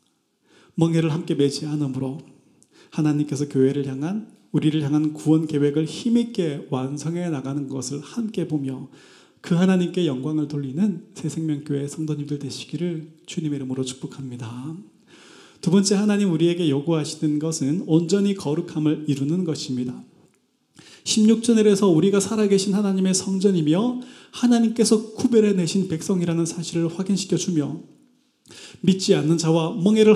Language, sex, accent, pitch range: Korean, male, native, 145-195 Hz